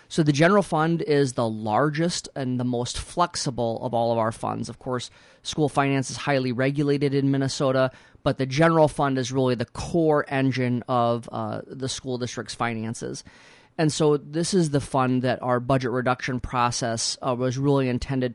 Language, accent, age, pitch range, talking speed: English, American, 30-49, 125-150 Hz, 180 wpm